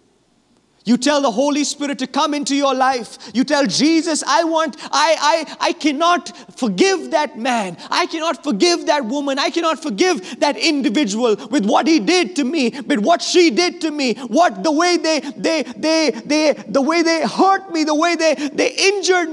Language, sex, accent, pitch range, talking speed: English, male, Indian, 200-320 Hz, 190 wpm